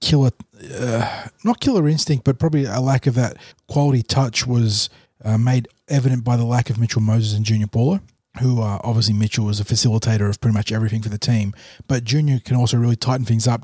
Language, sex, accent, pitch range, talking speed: English, male, Australian, 110-130 Hz, 210 wpm